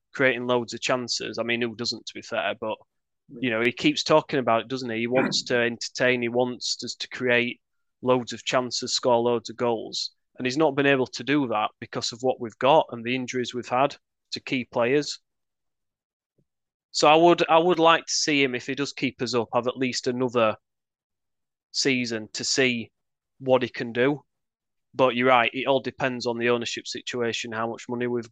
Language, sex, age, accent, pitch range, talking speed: English, male, 30-49, British, 120-135 Hz, 205 wpm